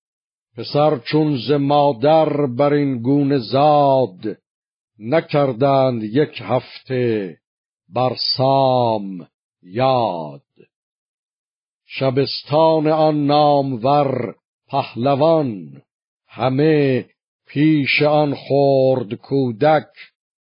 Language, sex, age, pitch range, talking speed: Persian, male, 50-69, 120-140 Hz, 65 wpm